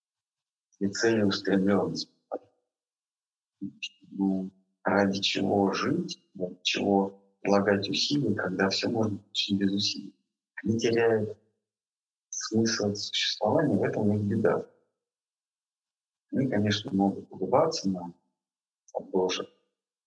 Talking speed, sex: 90 wpm, male